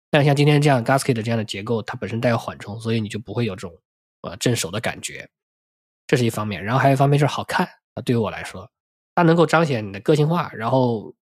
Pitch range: 110-135 Hz